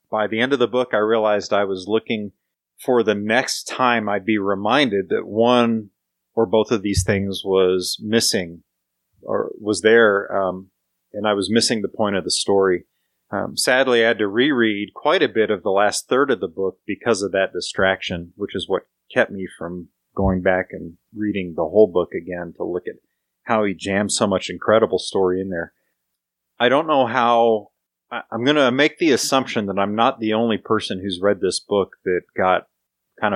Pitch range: 90-110 Hz